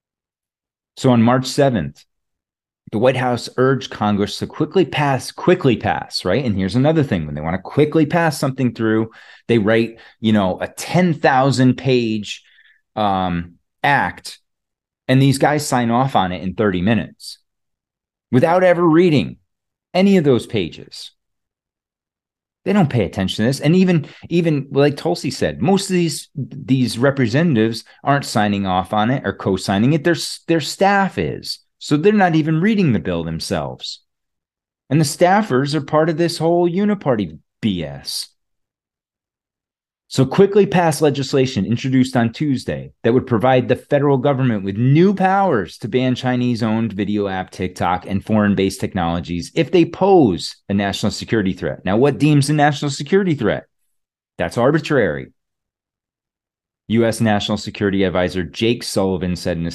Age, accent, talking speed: 30-49, American, 150 wpm